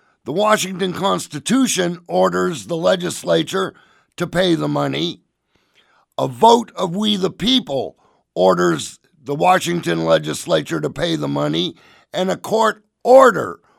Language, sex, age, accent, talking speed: English, male, 50-69, American, 120 wpm